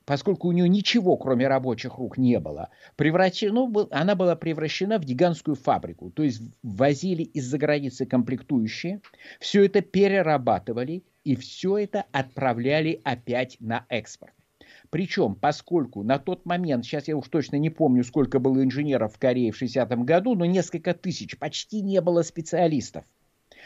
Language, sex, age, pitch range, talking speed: Russian, male, 50-69, 120-165 Hz, 145 wpm